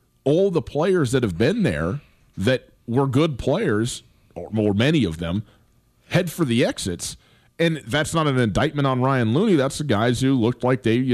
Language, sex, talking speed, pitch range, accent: English, male, 195 wpm, 110-145 Hz, American